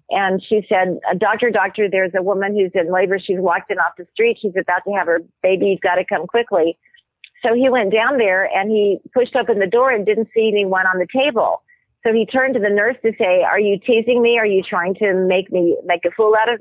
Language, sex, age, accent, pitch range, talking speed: English, female, 50-69, American, 190-230 Hz, 250 wpm